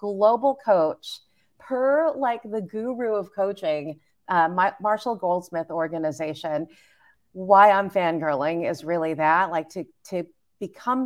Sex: female